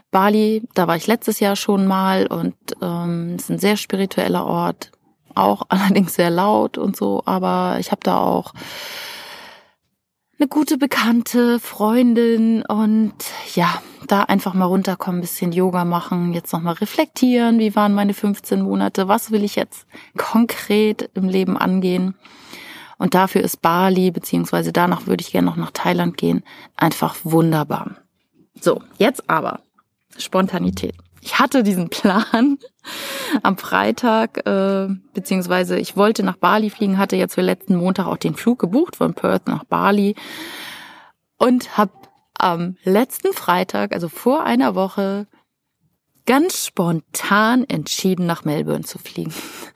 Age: 30-49